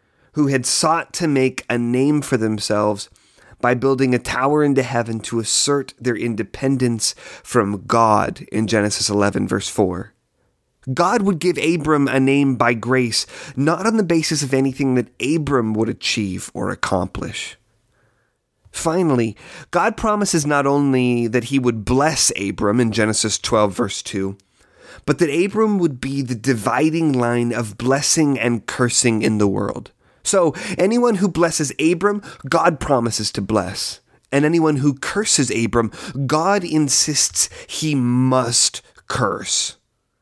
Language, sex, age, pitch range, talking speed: English, male, 30-49, 120-160 Hz, 140 wpm